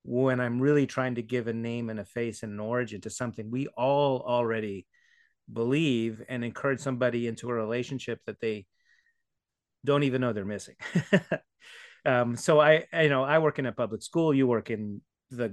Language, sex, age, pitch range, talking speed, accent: English, male, 30-49, 115-135 Hz, 190 wpm, American